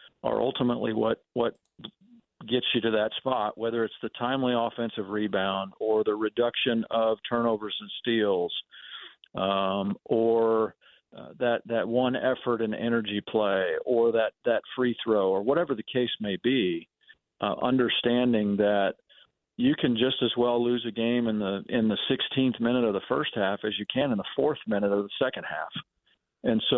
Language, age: English, 50-69